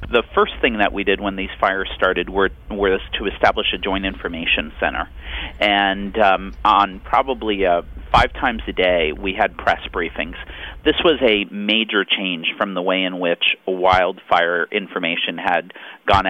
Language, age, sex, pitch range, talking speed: English, 40-59, male, 90-100 Hz, 170 wpm